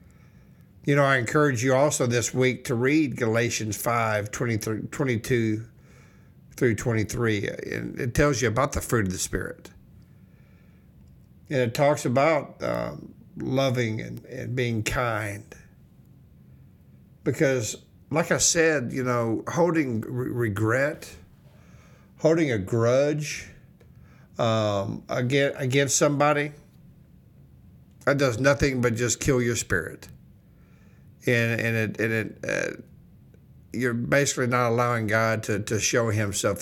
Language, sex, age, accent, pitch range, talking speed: English, male, 60-79, American, 110-140 Hz, 120 wpm